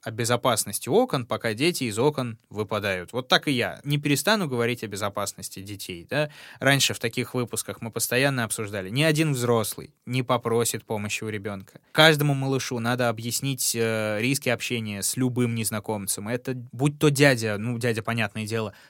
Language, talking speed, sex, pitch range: Russian, 160 wpm, male, 110-130 Hz